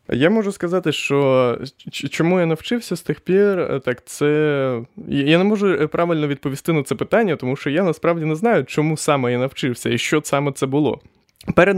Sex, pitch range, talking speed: male, 120-160 Hz, 185 wpm